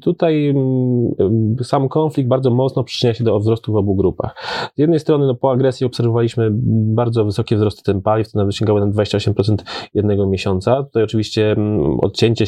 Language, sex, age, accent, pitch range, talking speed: Polish, male, 20-39, native, 110-125 Hz, 165 wpm